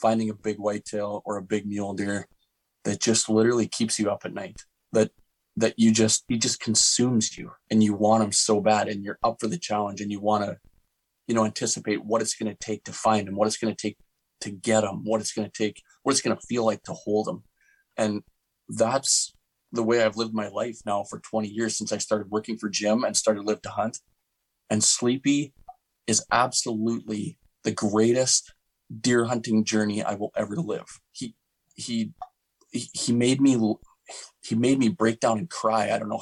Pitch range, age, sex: 105-115 Hz, 30-49, male